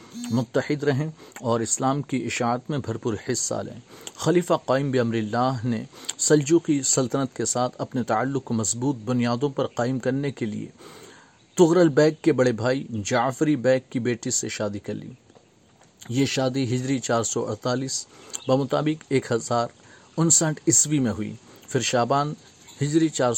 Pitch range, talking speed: 115-135 Hz, 155 wpm